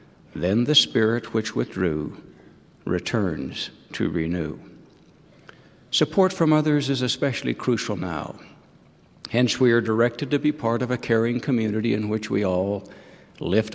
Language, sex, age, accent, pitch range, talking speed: English, male, 60-79, American, 105-125 Hz, 135 wpm